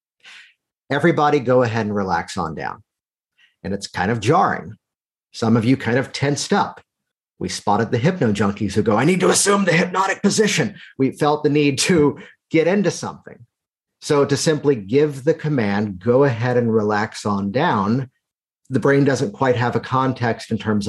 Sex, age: male, 50-69